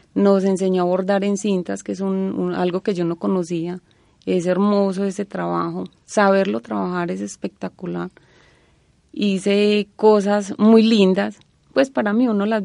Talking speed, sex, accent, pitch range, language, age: 150 wpm, female, Colombian, 170-205 Hz, Spanish, 30-49